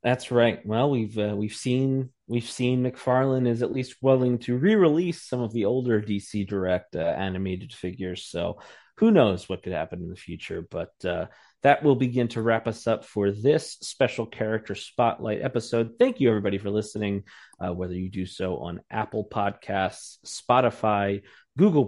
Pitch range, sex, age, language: 95-120 Hz, male, 30-49, English